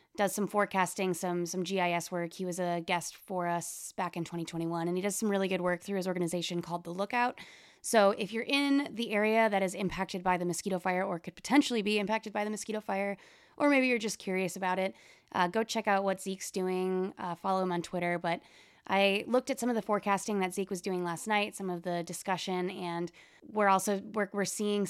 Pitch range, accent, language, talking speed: 175-205 Hz, American, English, 225 wpm